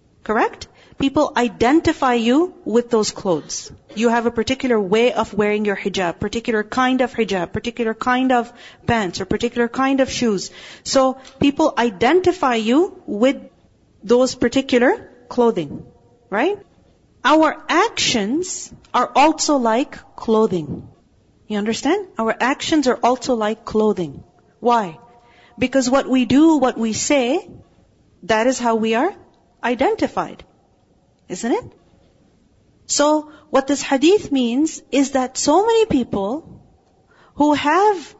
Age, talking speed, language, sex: 40-59, 125 wpm, English, female